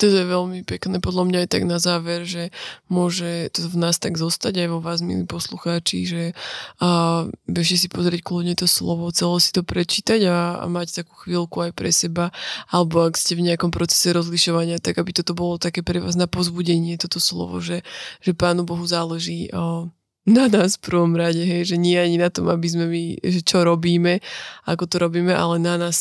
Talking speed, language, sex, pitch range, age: 205 wpm, Slovak, female, 170-180 Hz, 20-39